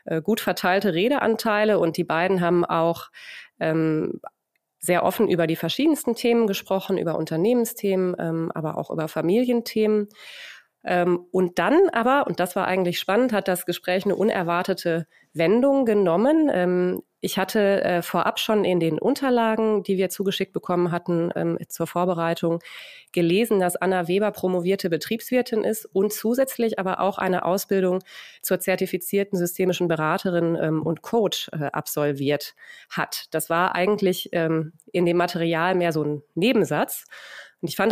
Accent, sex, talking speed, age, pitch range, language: German, female, 135 wpm, 30-49, 170-210 Hz, German